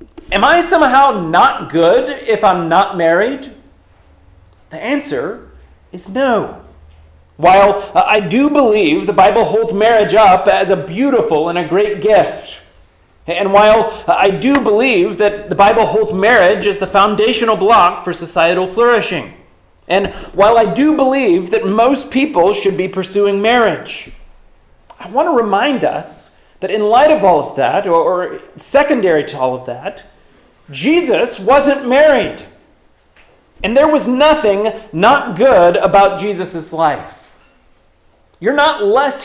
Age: 40-59